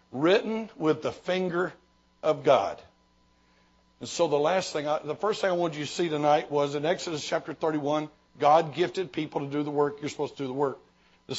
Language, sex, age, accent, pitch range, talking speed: English, male, 60-79, American, 155-195 Hz, 210 wpm